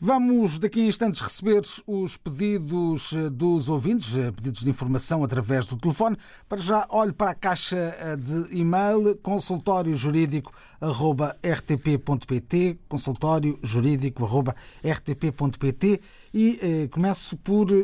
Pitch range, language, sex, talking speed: 130-185 Hz, Portuguese, male, 90 wpm